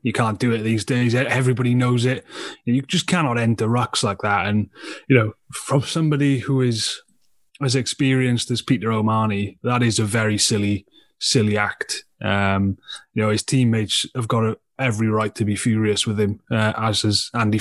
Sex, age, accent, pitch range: male, 30-49, British, 110-130 Hz